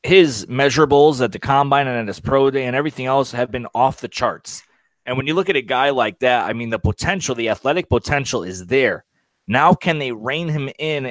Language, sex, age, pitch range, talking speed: English, male, 30-49, 115-145 Hz, 225 wpm